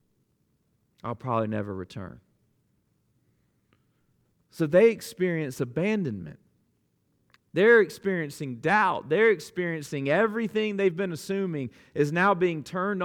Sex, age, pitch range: male, 40-59, 130-210 Hz